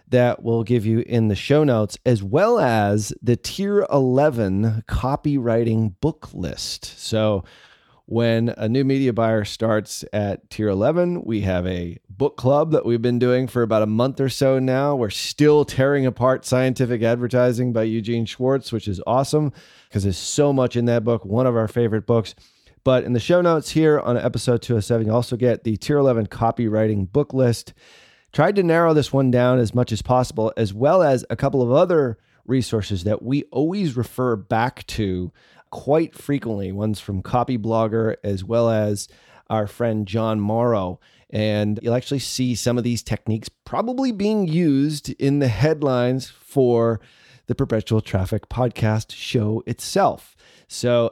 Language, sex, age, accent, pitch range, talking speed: English, male, 30-49, American, 110-135 Hz, 170 wpm